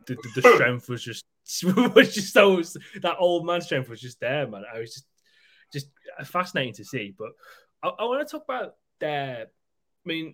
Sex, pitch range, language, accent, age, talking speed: male, 110-165 Hz, English, British, 10-29, 190 wpm